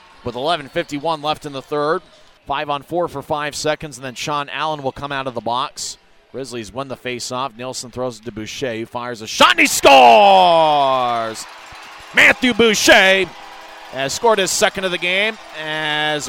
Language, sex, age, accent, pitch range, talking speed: English, male, 30-49, American, 140-175 Hz, 175 wpm